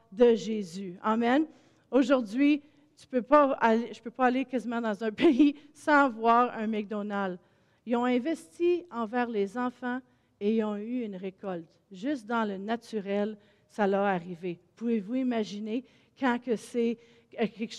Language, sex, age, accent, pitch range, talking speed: French, female, 40-59, Canadian, 225-255 Hz, 150 wpm